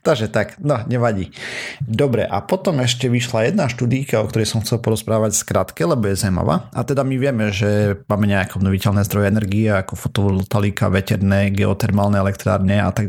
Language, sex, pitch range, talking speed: Slovak, male, 105-130 Hz, 170 wpm